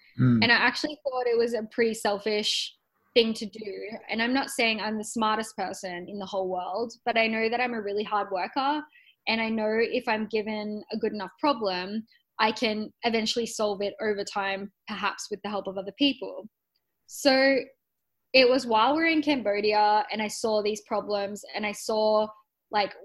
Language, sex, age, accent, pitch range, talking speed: English, female, 10-29, Australian, 205-245 Hz, 190 wpm